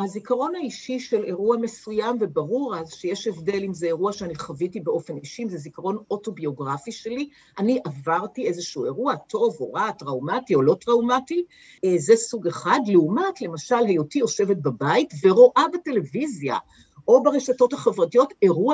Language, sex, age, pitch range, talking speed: Hebrew, female, 50-69, 180-255 Hz, 145 wpm